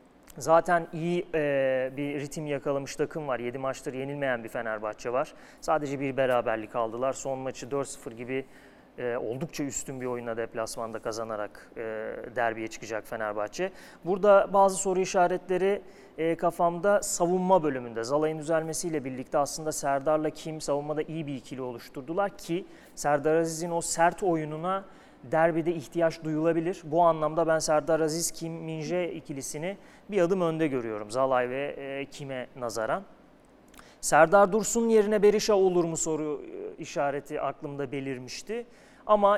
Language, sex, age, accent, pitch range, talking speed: Turkish, male, 30-49, native, 140-175 Hz, 130 wpm